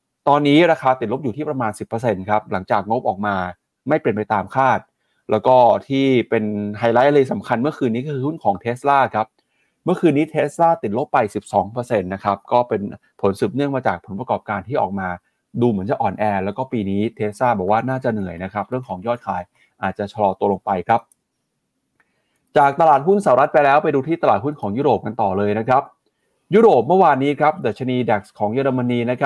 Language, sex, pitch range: Thai, male, 105-140 Hz